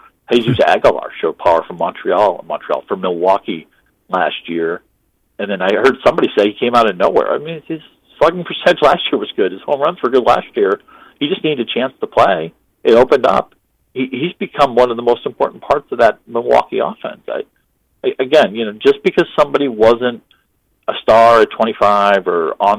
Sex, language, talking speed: male, English, 205 wpm